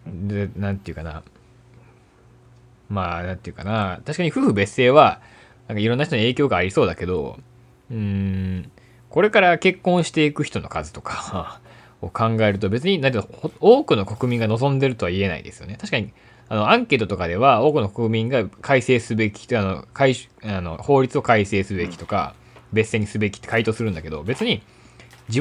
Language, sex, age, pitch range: Japanese, male, 20-39, 100-140 Hz